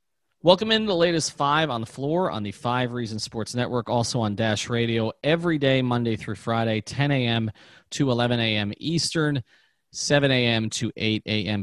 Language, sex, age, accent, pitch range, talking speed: English, male, 30-49, American, 110-140 Hz, 180 wpm